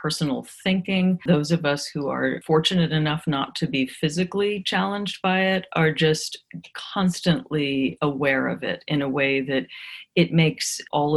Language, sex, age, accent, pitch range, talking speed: English, female, 40-59, American, 155-195 Hz, 155 wpm